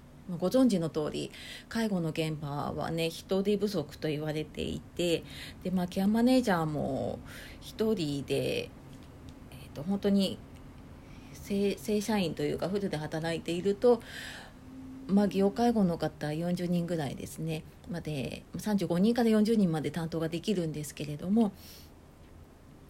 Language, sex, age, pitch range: Japanese, female, 40-59, 155-210 Hz